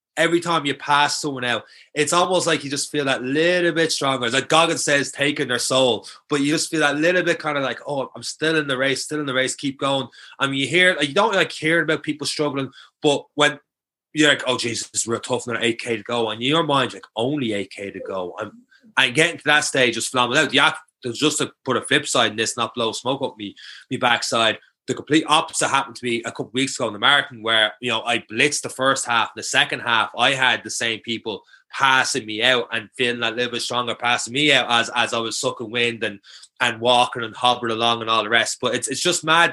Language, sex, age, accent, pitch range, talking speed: English, male, 20-39, Irish, 120-150 Hz, 245 wpm